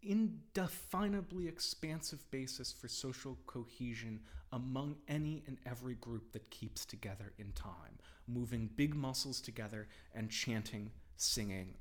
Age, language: 30-49, English